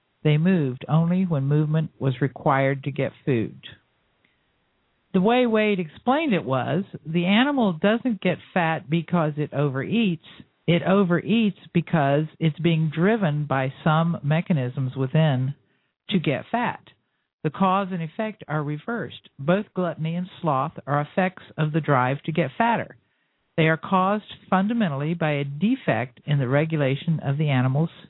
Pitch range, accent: 145-190 Hz, American